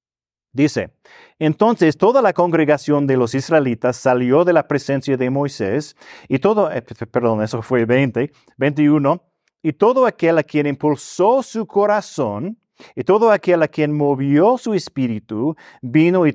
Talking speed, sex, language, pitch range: 145 wpm, male, Spanish, 120-160 Hz